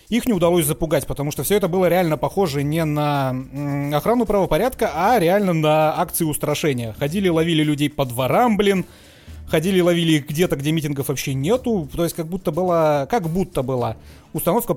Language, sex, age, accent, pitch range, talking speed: Russian, male, 30-49, native, 145-185 Hz, 175 wpm